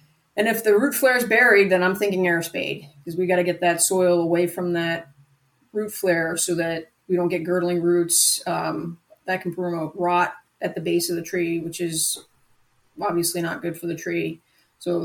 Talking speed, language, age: 205 wpm, English, 30-49